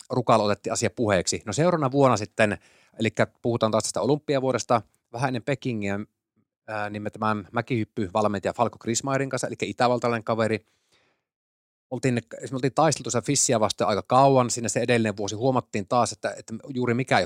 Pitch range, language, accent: 95-120 Hz, Finnish, native